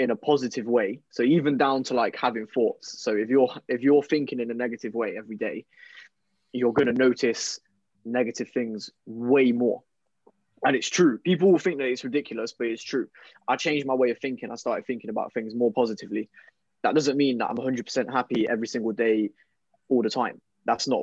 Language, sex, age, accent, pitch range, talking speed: English, male, 20-39, British, 110-140 Hz, 205 wpm